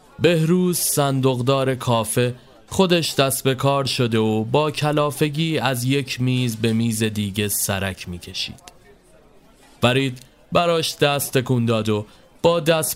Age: 30-49